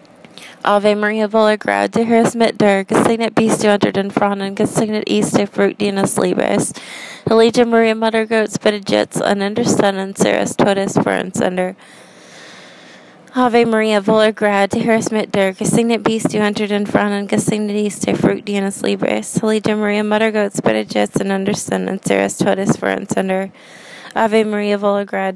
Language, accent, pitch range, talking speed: English, American, 190-215 Hz, 170 wpm